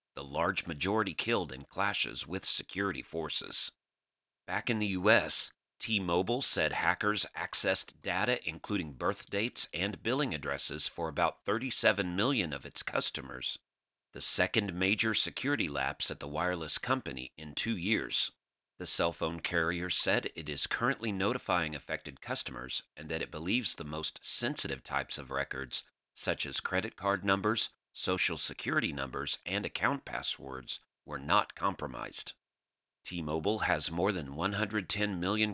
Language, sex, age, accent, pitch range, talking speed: English, male, 40-59, American, 80-105 Hz, 145 wpm